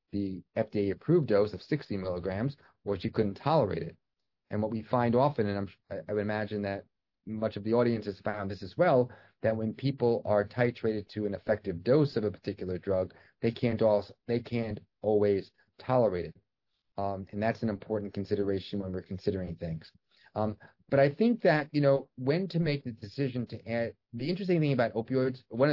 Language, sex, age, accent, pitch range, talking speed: English, male, 30-49, American, 105-125 Hz, 185 wpm